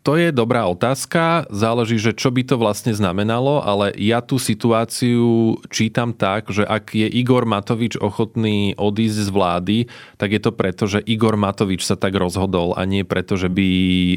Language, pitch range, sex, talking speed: Slovak, 100-115 Hz, male, 175 wpm